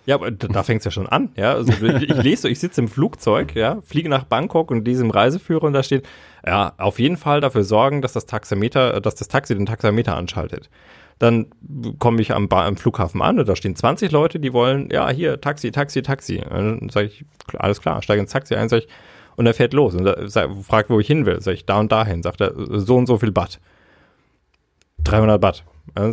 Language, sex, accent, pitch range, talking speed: German, male, German, 95-125 Hz, 225 wpm